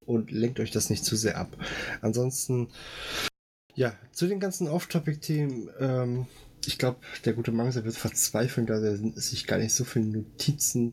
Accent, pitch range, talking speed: German, 110-140 Hz, 165 wpm